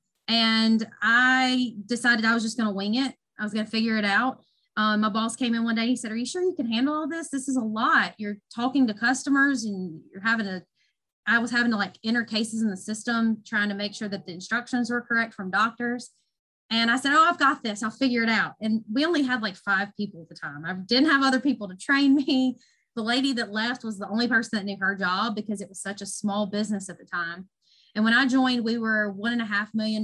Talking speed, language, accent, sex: 260 wpm, English, American, female